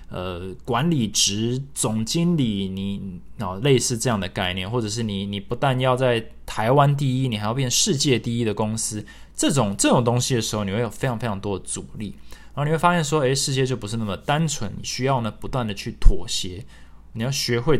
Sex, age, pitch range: male, 20-39, 100-130 Hz